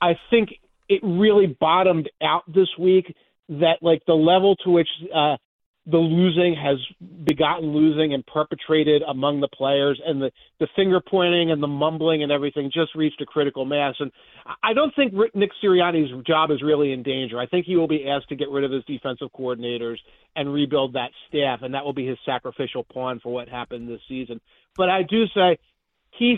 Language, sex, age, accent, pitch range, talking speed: English, male, 40-59, American, 140-185 Hz, 190 wpm